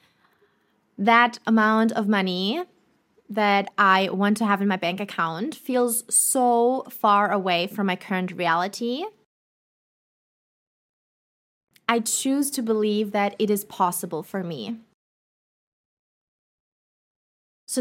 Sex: female